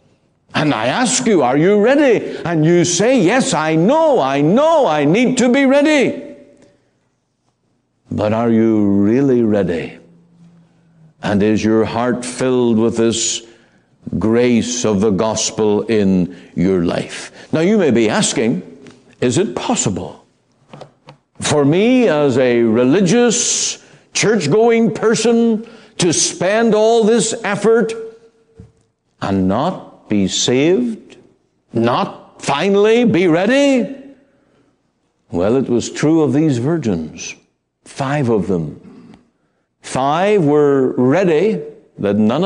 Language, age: English, 60-79